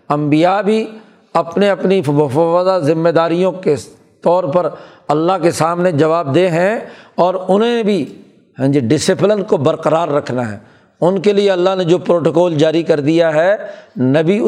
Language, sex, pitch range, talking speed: Urdu, male, 145-190 Hz, 150 wpm